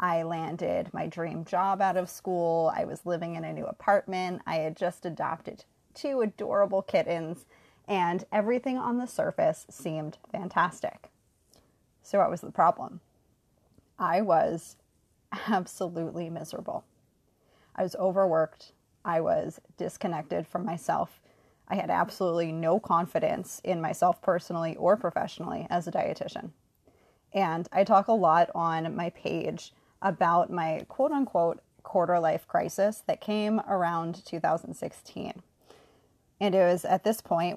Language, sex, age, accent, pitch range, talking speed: English, female, 20-39, American, 165-195 Hz, 130 wpm